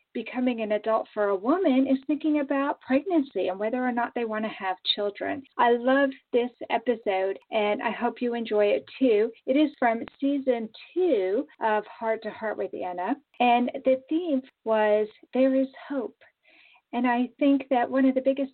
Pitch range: 210-270 Hz